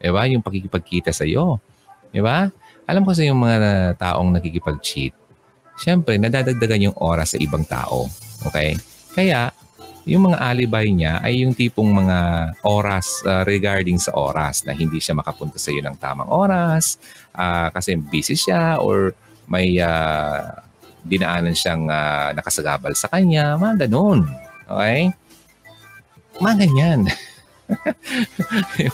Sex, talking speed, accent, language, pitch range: male, 135 wpm, native, Filipino, 85-130 Hz